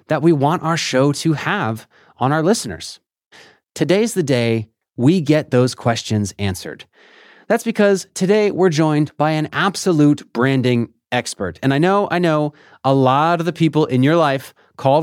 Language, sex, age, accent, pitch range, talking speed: English, male, 30-49, American, 135-185 Hz, 170 wpm